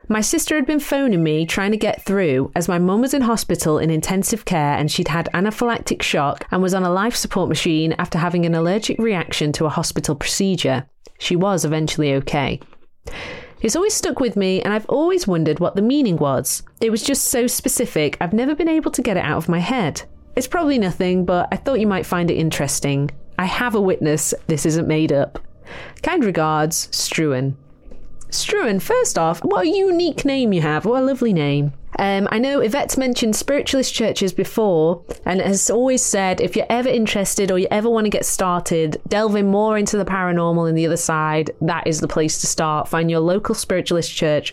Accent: British